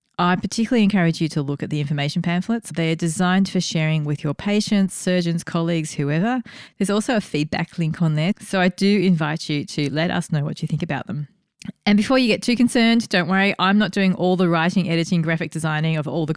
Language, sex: English, female